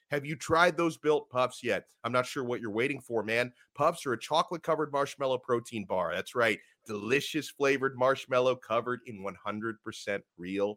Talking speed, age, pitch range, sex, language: 165 wpm, 30-49, 115-165 Hz, male, English